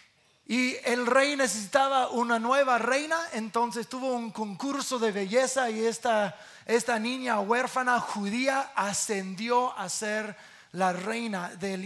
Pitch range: 210-255 Hz